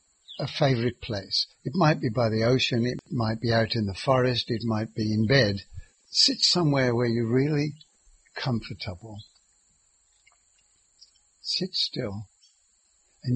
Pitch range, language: 110-150 Hz, English